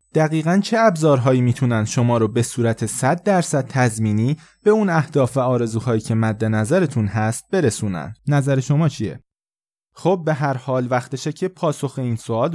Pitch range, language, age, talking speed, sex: 115-155 Hz, Persian, 20-39, 160 wpm, male